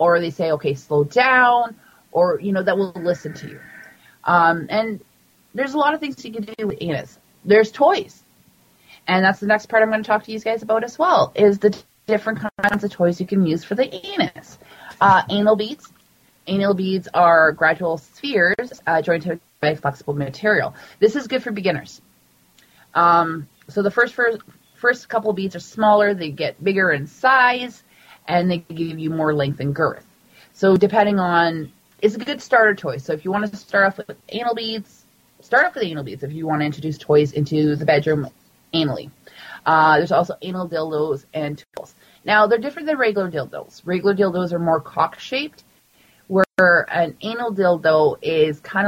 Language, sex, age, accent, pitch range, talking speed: English, female, 30-49, American, 160-215 Hz, 190 wpm